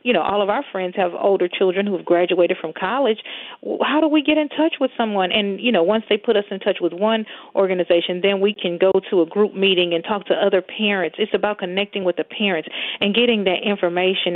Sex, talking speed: female, 240 wpm